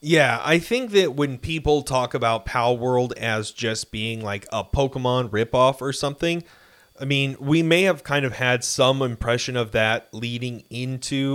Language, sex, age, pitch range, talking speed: English, male, 30-49, 115-145 Hz, 175 wpm